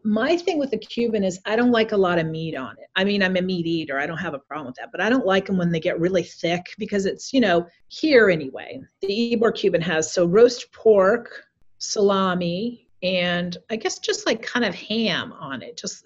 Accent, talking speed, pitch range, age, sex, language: American, 235 wpm, 175-240 Hz, 40-59, female, English